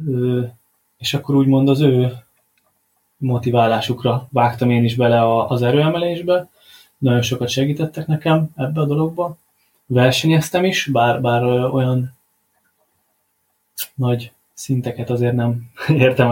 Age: 20-39